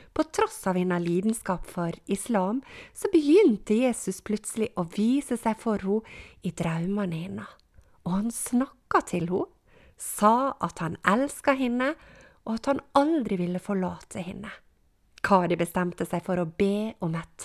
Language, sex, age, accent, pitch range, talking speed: English, female, 30-49, Swedish, 185-245 Hz, 150 wpm